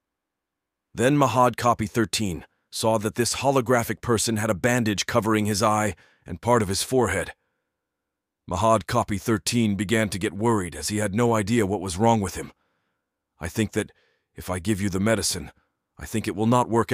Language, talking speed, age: English, 185 wpm, 40-59